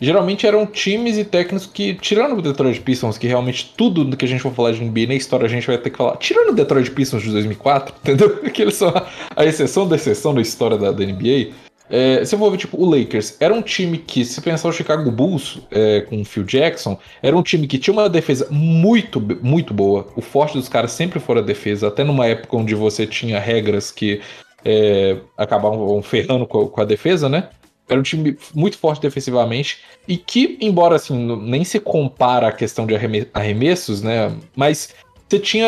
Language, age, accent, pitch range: Portuguese, 20-39, Brazilian, 115-160 Hz